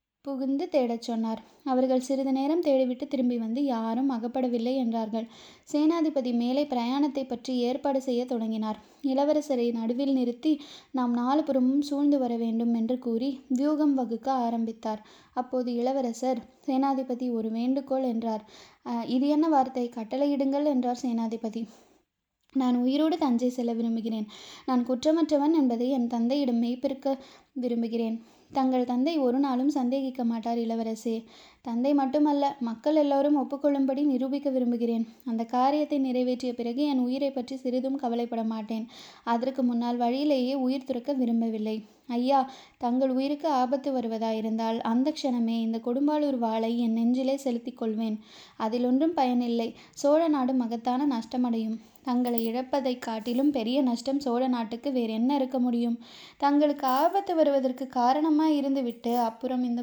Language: Tamil